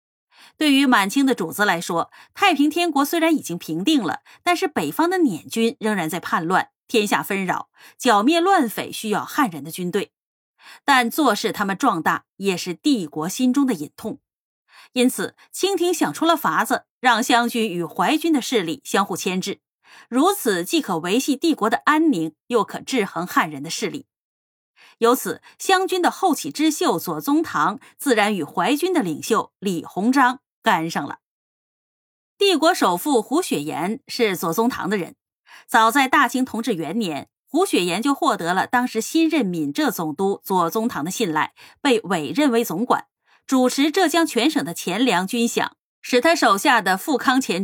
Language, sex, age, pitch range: Chinese, female, 30-49, 200-300 Hz